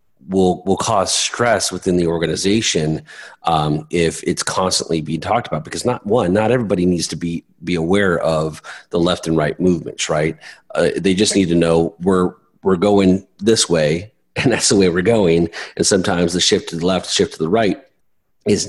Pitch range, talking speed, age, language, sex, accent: 85-100 Hz, 195 wpm, 30-49, English, male, American